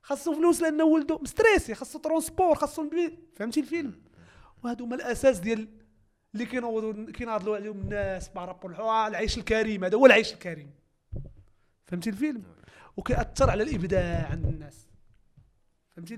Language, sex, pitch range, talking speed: Arabic, male, 165-250 Hz, 135 wpm